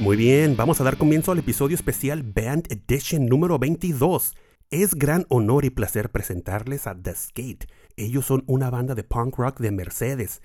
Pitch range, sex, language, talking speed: 105-145 Hz, male, Spanish, 180 wpm